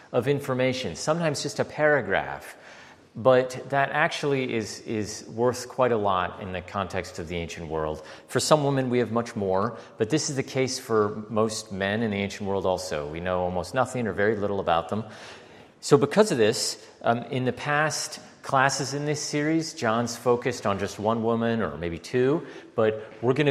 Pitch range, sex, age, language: 95-130 Hz, male, 40-59, English